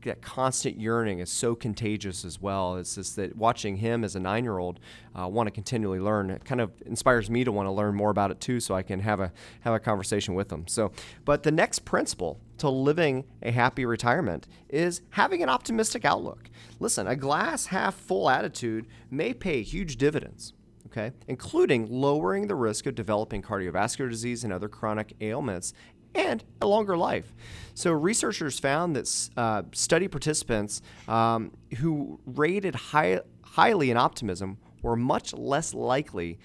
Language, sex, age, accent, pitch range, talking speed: English, male, 30-49, American, 105-135 Hz, 170 wpm